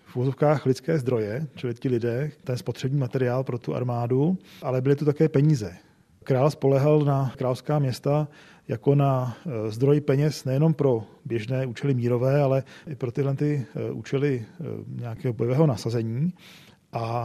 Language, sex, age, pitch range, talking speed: Czech, male, 40-59, 130-155 Hz, 140 wpm